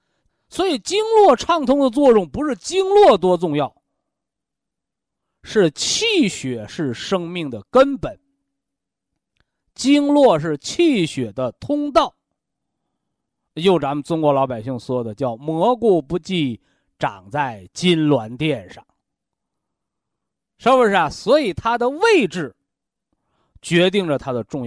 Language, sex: Chinese, male